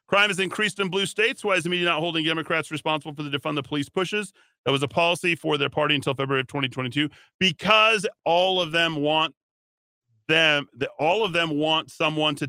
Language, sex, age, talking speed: English, male, 40-59, 205 wpm